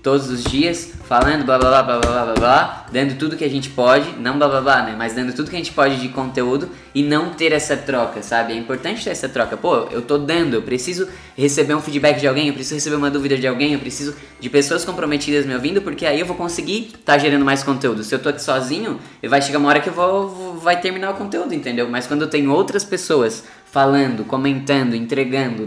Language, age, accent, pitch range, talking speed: Portuguese, 10-29, Brazilian, 130-150 Hz, 240 wpm